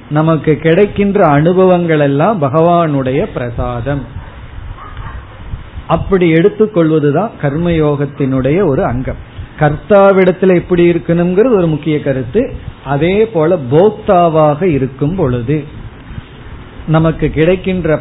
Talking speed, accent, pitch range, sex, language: 80 wpm, native, 140-180 Hz, male, Tamil